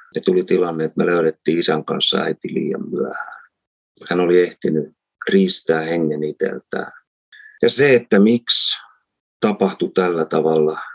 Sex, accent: male, native